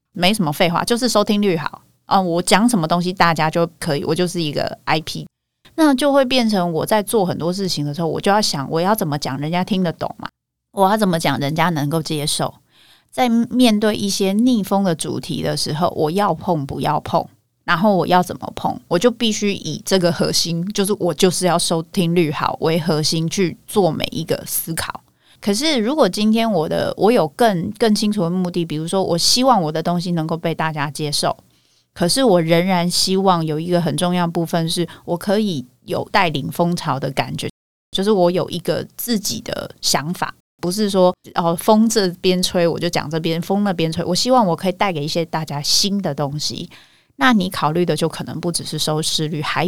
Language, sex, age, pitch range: Chinese, female, 30-49, 165-200 Hz